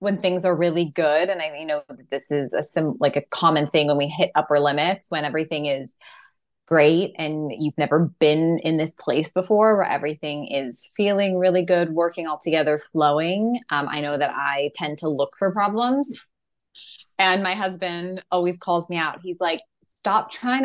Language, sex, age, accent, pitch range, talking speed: English, female, 20-39, American, 150-190 Hz, 190 wpm